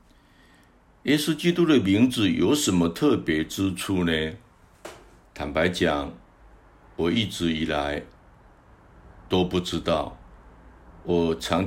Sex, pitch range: male, 80-100 Hz